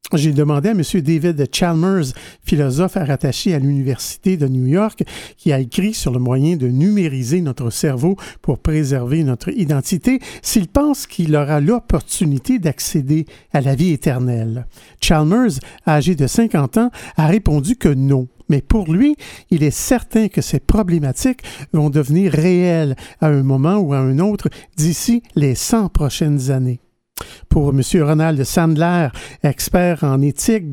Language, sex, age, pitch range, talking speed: French, male, 50-69, 140-190 Hz, 150 wpm